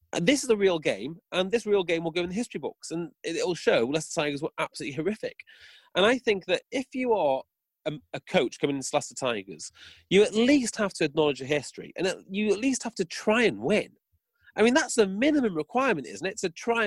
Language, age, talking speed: English, 30-49, 235 wpm